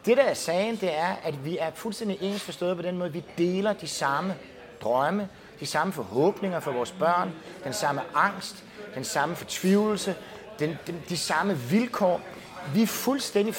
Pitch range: 155-215 Hz